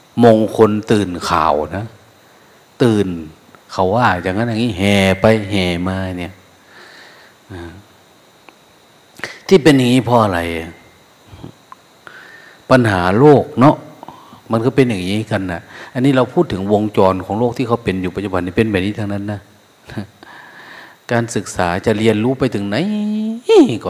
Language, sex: Thai, male